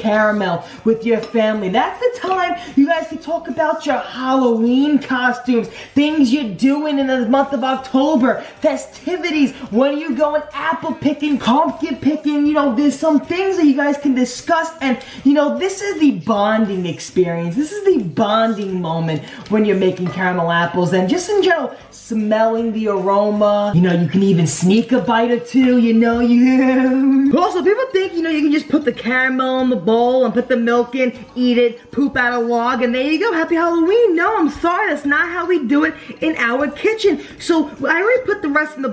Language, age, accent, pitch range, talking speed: English, 20-39, American, 240-320 Hz, 200 wpm